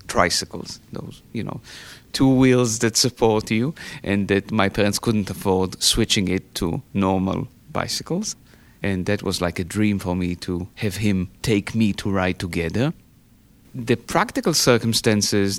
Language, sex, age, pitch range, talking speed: English, male, 30-49, 95-115 Hz, 150 wpm